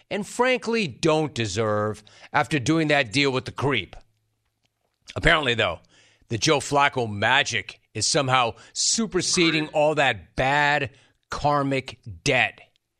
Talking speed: 115 wpm